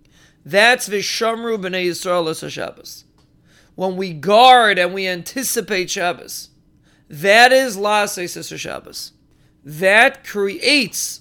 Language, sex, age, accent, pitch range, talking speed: English, male, 30-49, American, 175-220 Hz, 105 wpm